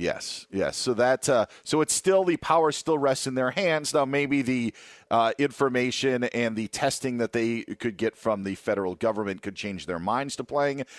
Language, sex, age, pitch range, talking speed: English, male, 40-59, 115-150 Hz, 200 wpm